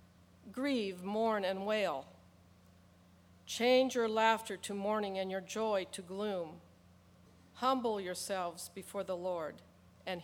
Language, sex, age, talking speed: English, female, 50-69, 115 wpm